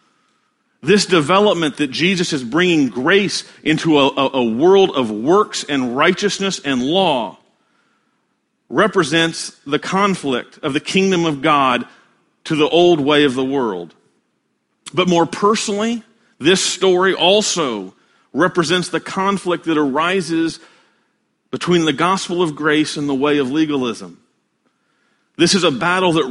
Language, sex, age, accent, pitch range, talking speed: English, male, 40-59, American, 150-200 Hz, 130 wpm